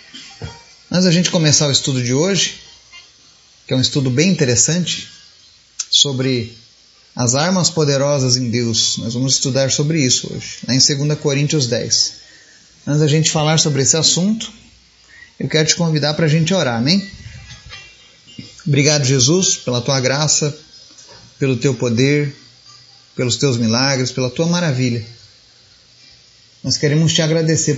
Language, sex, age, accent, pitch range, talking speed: Portuguese, male, 30-49, Brazilian, 125-155 Hz, 140 wpm